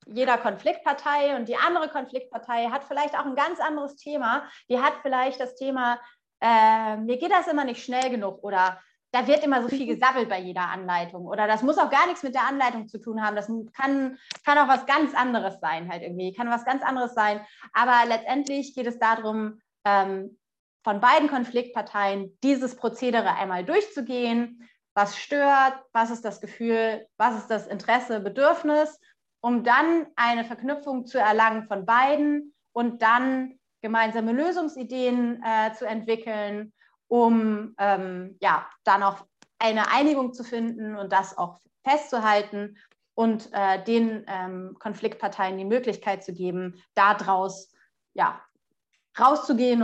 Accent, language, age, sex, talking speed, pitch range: German, German, 30-49, female, 150 wpm, 205-260 Hz